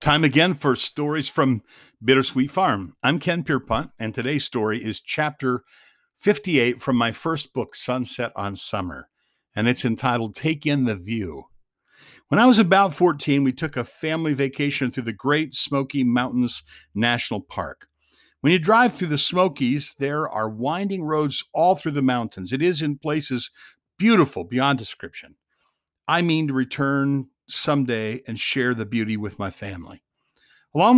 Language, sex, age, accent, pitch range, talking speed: English, male, 50-69, American, 125-150 Hz, 155 wpm